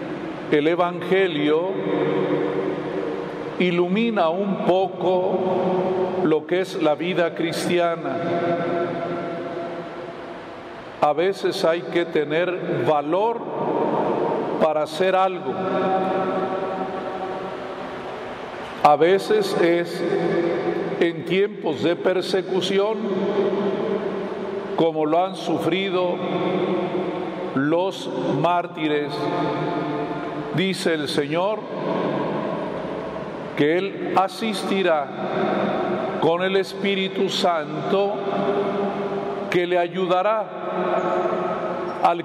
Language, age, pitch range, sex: Spanish, 50-69, 170-200 Hz, male